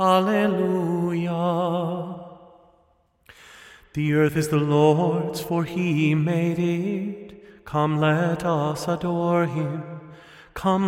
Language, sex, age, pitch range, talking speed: English, male, 30-49, 160-195 Hz, 90 wpm